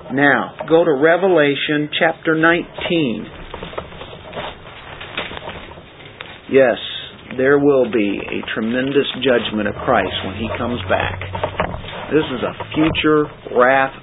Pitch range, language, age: 145-185 Hz, English, 50-69